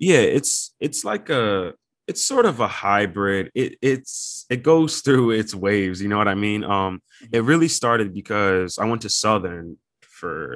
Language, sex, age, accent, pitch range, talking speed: English, male, 20-39, American, 95-120 Hz, 180 wpm